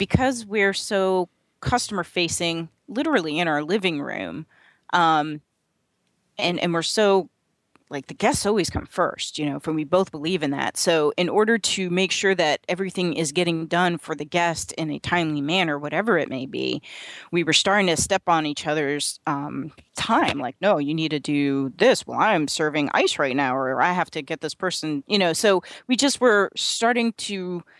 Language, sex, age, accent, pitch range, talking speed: English, female, 30-49, American, 155-190 Hz, 190 wpm